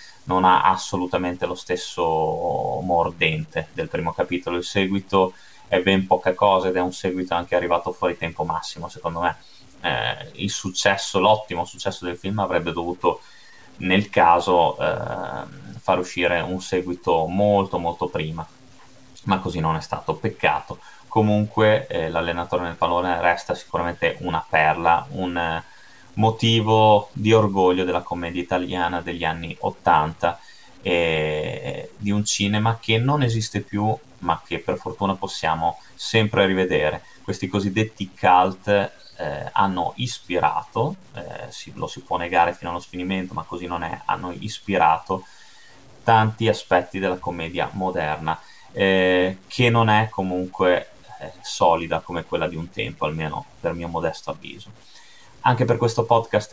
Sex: male